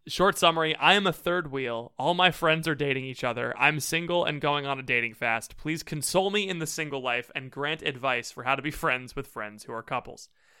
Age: 20-39